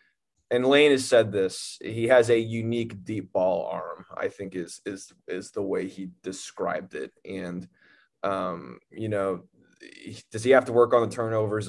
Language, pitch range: English, 95-115 Hz